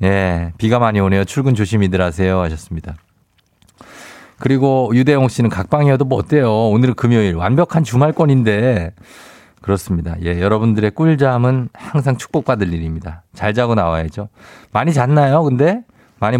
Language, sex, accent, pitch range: Korean, male, native, 95-140 Hz